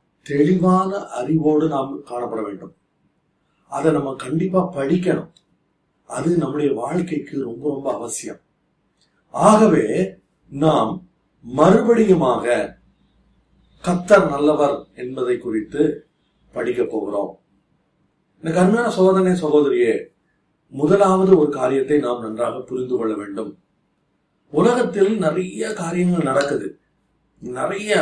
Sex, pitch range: male, 145-185 Hz